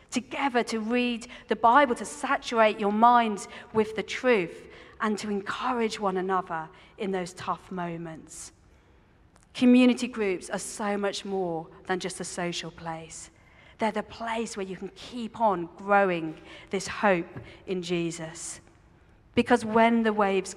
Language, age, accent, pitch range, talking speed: English, 40-59, British, 180-220 Hz, 145 wpm